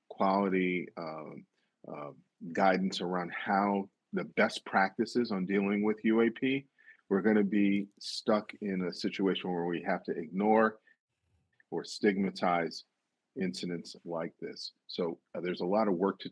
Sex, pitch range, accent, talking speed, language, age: male, 95-115 Hz, American, 145 wpm, English, 40-59